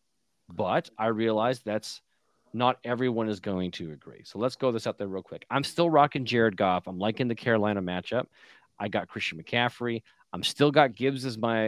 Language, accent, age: English, American, 30-49